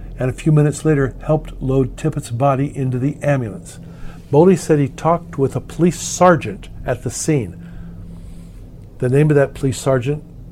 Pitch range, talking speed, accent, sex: 120-150 Hz, 165 wpm, American, male